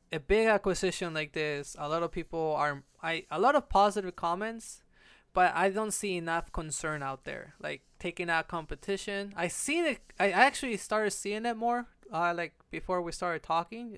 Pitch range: 155-205 Hz